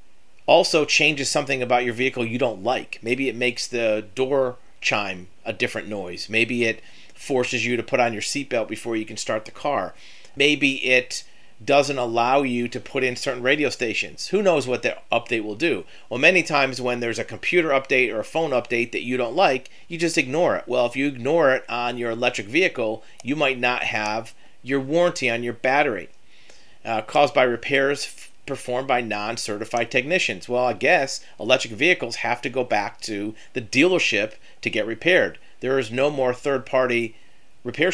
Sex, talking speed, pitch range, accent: male, 190 wpm, 115-135 Hz, American